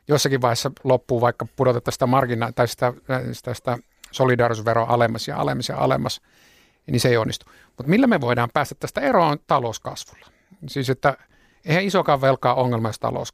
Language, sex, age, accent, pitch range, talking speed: Finnish, male, 50-69, native, 120-145 Hz, 140 wpm